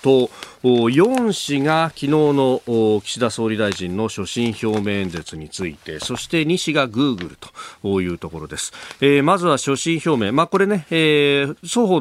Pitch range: 100-150 Hz